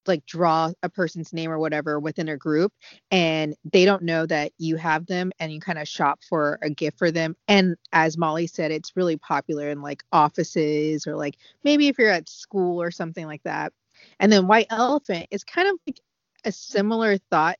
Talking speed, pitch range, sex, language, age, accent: 205 wpm, 155-195 Hz, female, English, 30-49, American